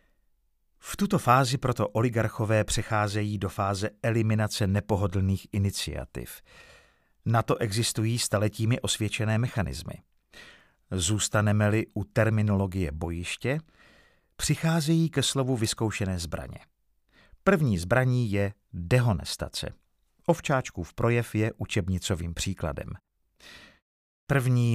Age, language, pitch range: 50-69, Czech, 100-130 Hz